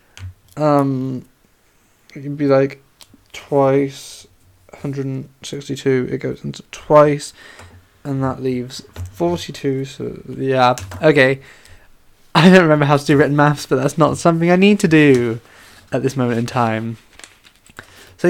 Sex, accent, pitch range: male, British, 105-150 Hz